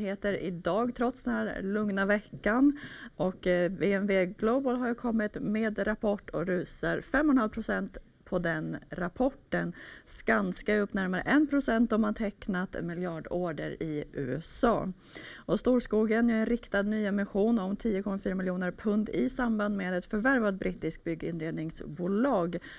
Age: 30-49